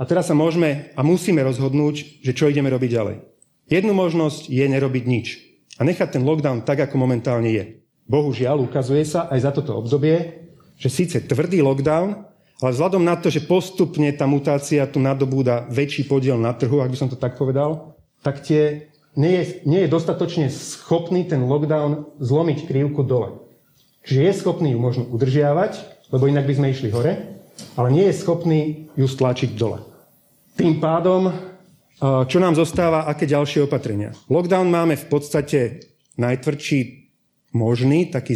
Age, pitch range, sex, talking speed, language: 30-49, 130-155 Hz, male, 155 wpm, Slovak